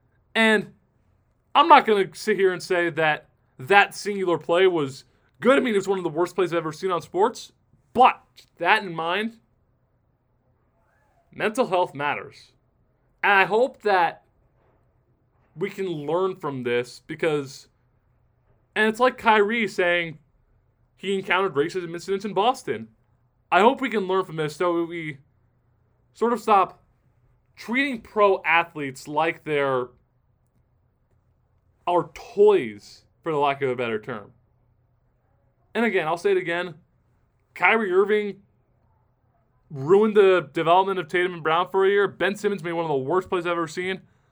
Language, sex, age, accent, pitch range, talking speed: English, male, 20-39, American, 125-190 Hz, 155 wpm